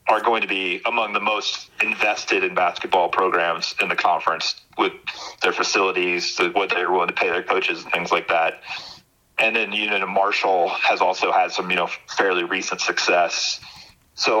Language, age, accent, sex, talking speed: English, 30-49, American, male, 185 wpm